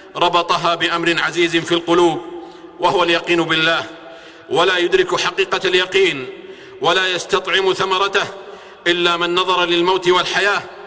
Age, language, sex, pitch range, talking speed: 50-69, Arabic, male, 160-210 Hz, 110 wpm